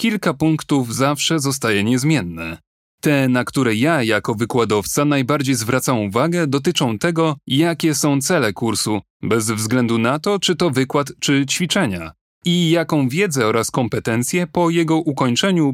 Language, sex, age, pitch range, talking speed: Polish, male, 30-49, 115-155 Hz, 140 wpm